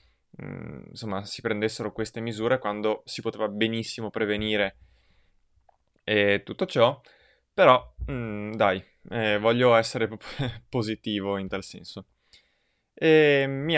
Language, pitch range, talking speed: Italian, 100-125 Hz, 100 wpm